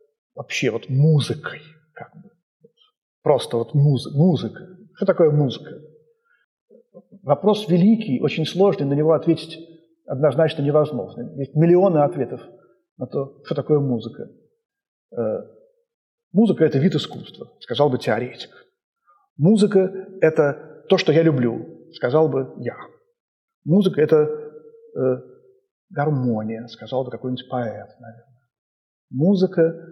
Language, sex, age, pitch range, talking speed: Russian, male, 40-59, 130-175 Hz, 110 wpm